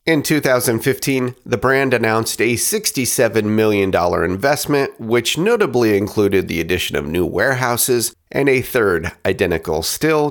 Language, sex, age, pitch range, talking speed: English, male, 40-59, 100-145 Hz, 130 wpm